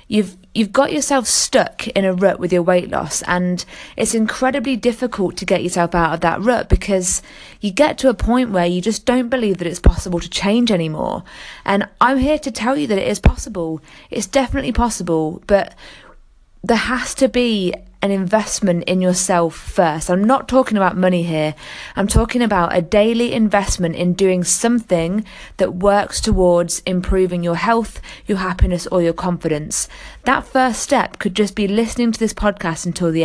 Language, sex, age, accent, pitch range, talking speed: English, female, 20-39, British, 180-225 Hz, 180 wpm